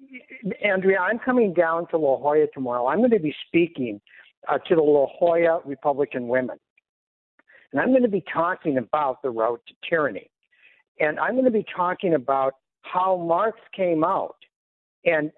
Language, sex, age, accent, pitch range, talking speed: English, male, 60-79, American, 150-200 Hz, 170 wpm